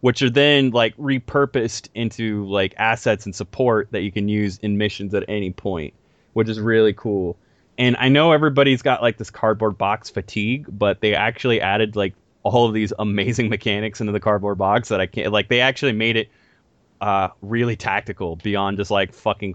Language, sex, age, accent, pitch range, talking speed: English, male, 30-49, American, 105-125 Hz, 190 wpm